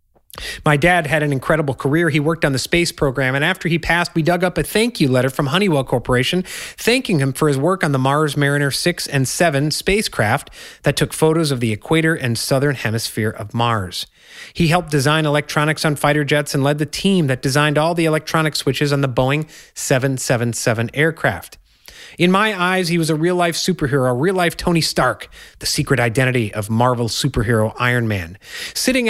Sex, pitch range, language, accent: male, 130-170 Hz, English, American